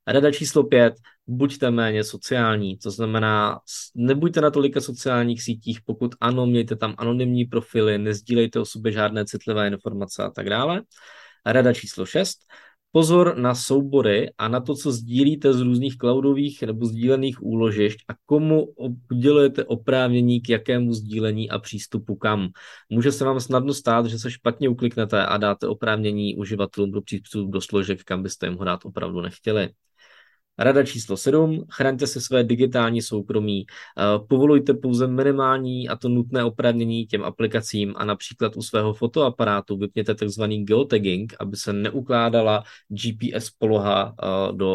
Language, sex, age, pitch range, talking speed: Czech, male, 20-39, 105-130 Hz, 145 wpm